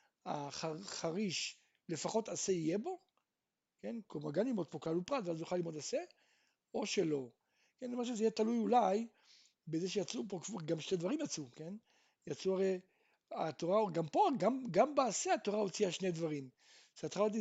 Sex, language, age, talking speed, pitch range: male, Hebrew, 60-79, 140 wpm, 165-235 Hz